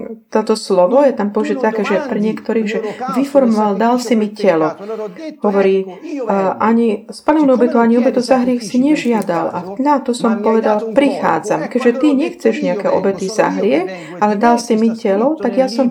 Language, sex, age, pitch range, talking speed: Slovak, female, 40-59, 200-250 Hz, 170 wpm